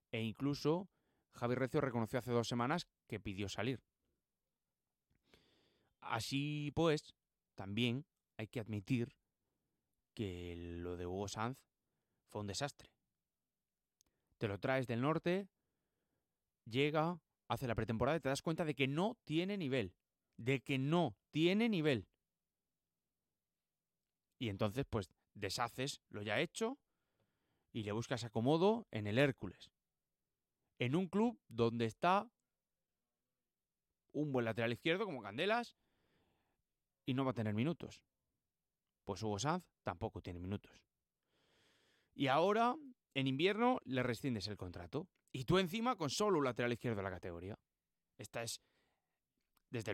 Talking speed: 130 wpm